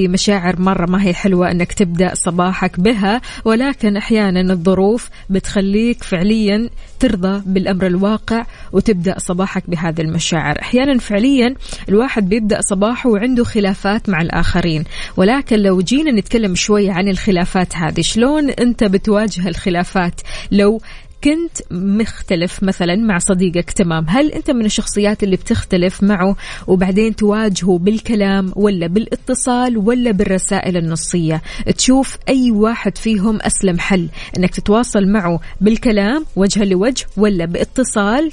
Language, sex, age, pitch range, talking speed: Arabic, female, 20-39, 185-220 Hz, 120 wpm